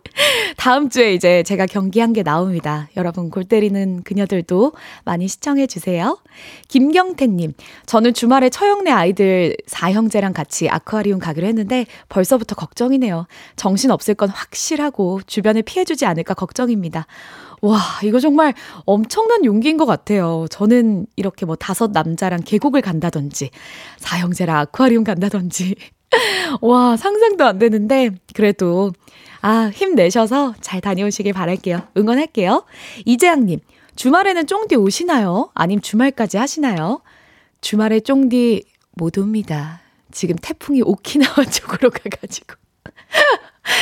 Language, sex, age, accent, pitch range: Korean, female, 20-39, native, 190-265 Hz